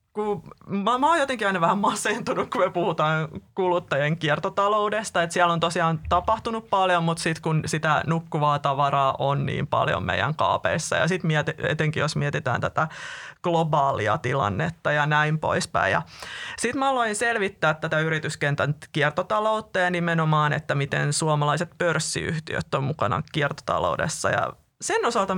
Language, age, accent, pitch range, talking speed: Finnish, 30-49, native, 150-190 Hz, 135 wpm